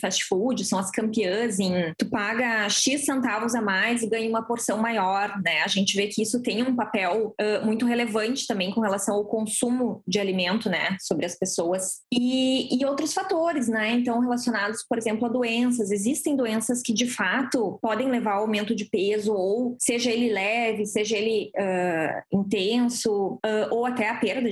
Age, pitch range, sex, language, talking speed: 20-39, 210-250 Hz, female, Portuguese, 175 wpm